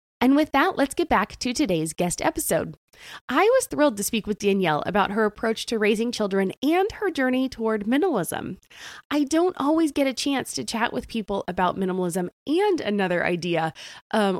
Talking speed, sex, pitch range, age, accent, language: 185 wpm, female, 190-275 Hz, 20-39, American, English